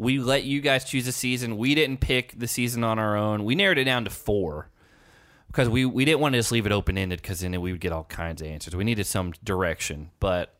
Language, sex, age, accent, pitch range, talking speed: English, male, 20-39, American, 90-120 Hz, 255 wpm